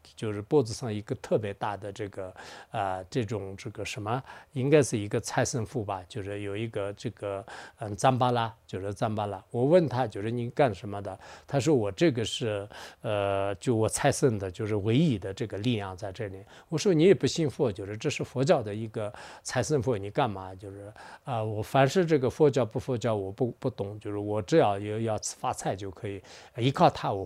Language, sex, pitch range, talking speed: English, male, 105-145 Hz, 285 wpm